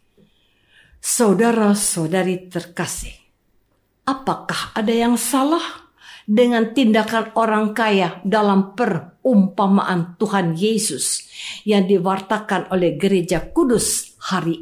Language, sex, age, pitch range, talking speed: Indonesian, female, 50-69, 185-270 Hz, 80 wpm